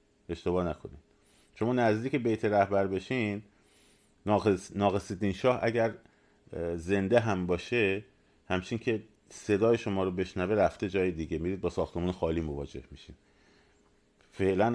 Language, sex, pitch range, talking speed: Persian, male, 80-100 Hz, 125 wpm